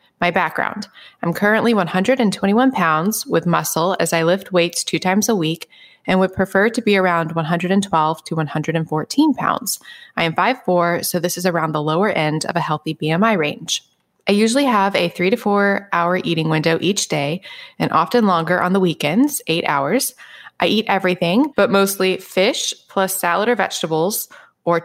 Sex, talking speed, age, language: female, 175 wpm, 20-39, English